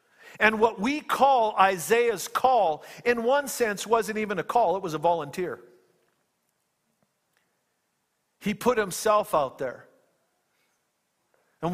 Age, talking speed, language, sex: 50-69, 120 wpm, English, male